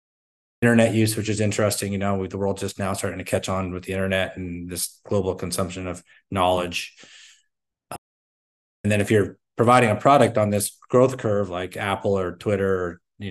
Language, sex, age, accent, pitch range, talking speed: English, male, 30-49, American, 95-110 Hz, 190 wpm